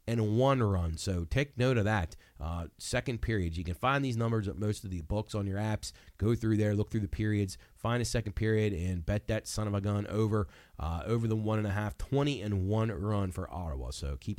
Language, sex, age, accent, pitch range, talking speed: English, male, 30-49, American, 95-125 Hz, 240 wpm